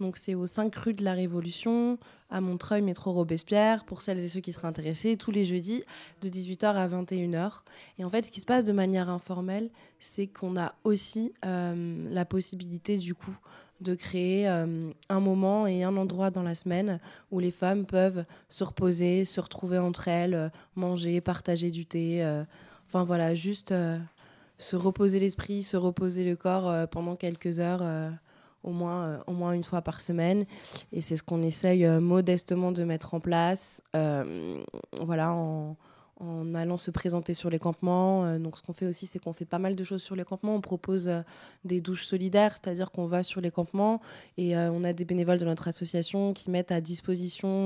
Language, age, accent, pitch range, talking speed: French, 20-39, French, 170-190 Hz, 200 wpm